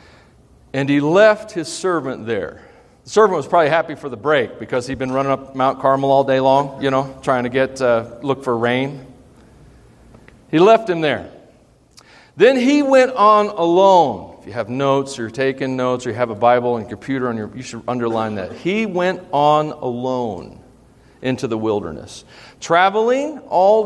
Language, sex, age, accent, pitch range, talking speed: English, male, 40-59, American, 125-195 Hz, 185 wpm